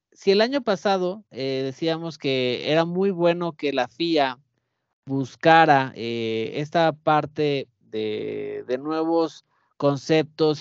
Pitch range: 130-185 Hz